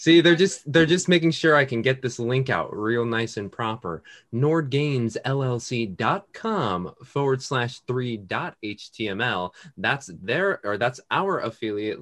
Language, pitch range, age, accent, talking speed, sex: English, 100-145 Hz, 20-39, American, 135 wpm, male